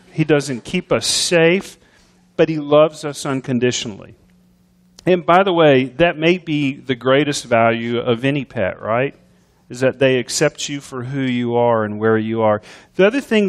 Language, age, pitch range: English, 40-59, 130-175 Hz